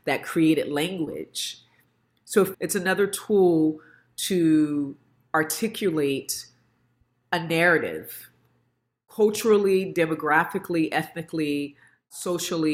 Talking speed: 70 wpm